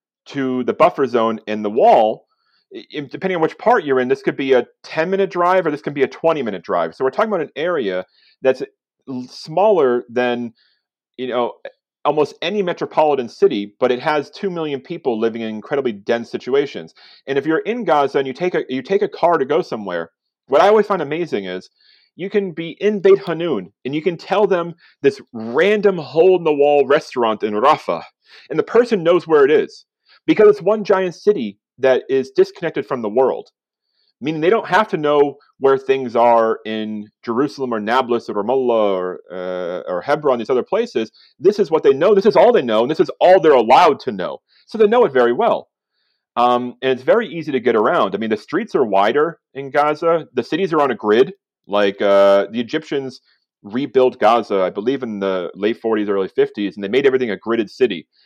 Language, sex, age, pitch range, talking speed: English, male, 30-49, 120-205 Hz, 205 wpm